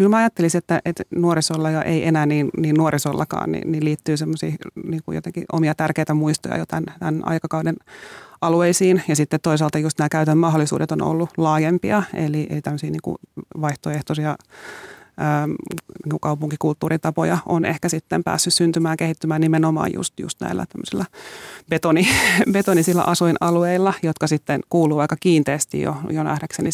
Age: 30-49